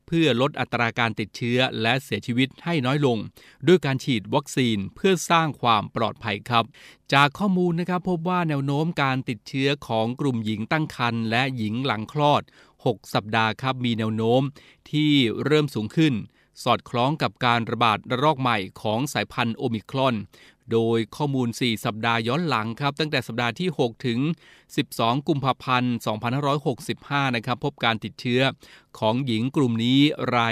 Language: Thai